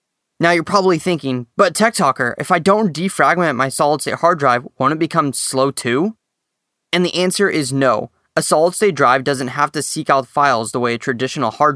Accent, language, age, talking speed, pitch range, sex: American, English, 20-39, 210 wpm, 130-160 Hz, male